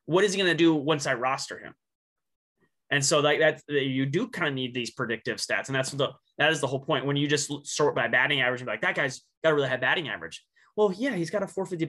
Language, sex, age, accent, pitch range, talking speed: English, male, 20-39, American, 125-150 Hz, 280 wpm